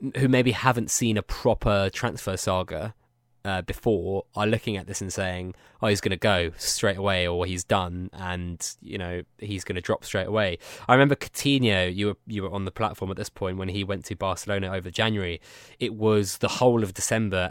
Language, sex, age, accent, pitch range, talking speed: English, male, 20-39, British, 95-120 Hz, 210 wpm